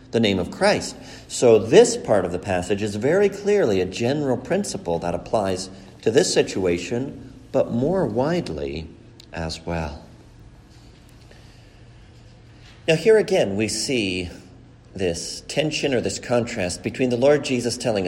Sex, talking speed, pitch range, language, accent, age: male, 135 wpm, 110-175 Hz, English, American, 50-69